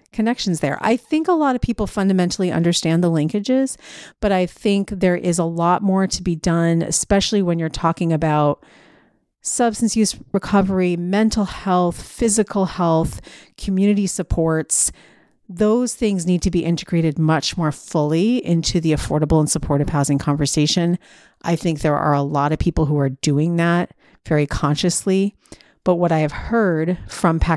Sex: female